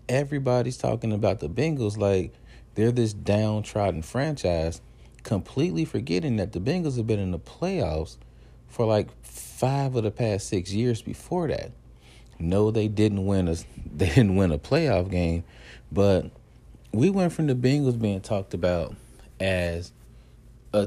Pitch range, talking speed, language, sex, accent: 80-110 Hz, 150 wpm, English, male, American